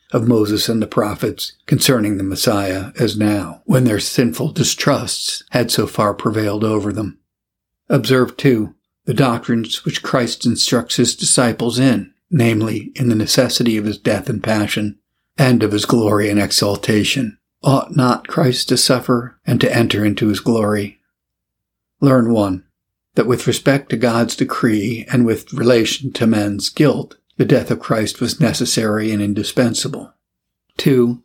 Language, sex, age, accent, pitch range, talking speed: English, male, 60-79, American, 105-125 Hz, 150 wpm